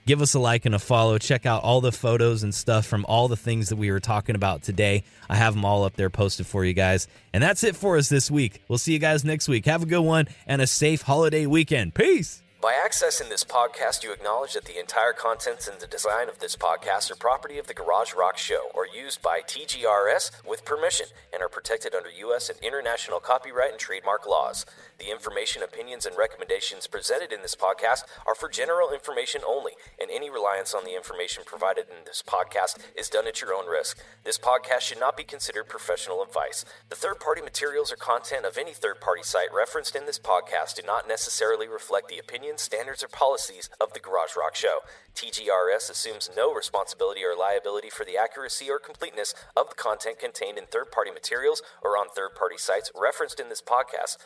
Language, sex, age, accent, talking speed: English, male, 30-49, American, 210 wpm